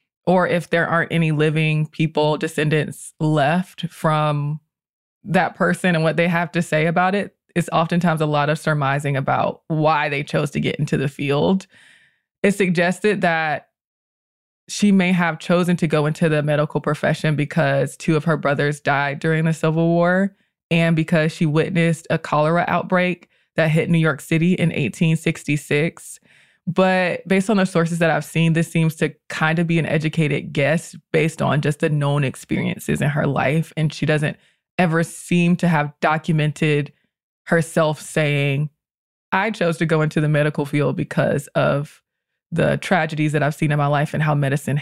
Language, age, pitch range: English, 20-39, 150-175 Hz